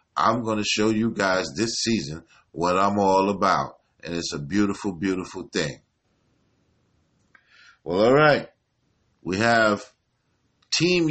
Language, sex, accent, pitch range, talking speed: English, male, American, 90-115 Hz, 125 wpm